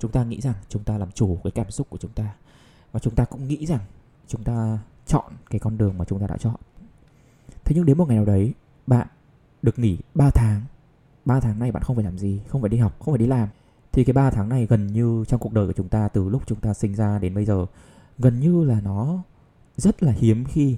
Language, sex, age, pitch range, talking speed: English, male, 20-39, 105-130 Hz, 255 wpm